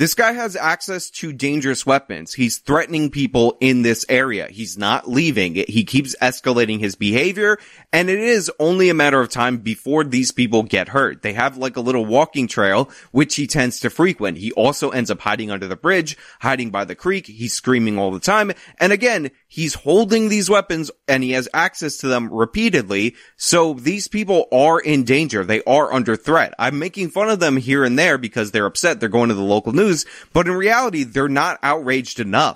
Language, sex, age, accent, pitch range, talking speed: English, male, 20-39, American, 120-165 Hz, 205 wpm